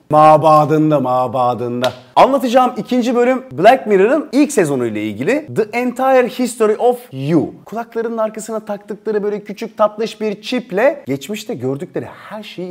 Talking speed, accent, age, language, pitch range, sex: 130 wpm, native, 30-49, Turkish, 115-185 Hz, male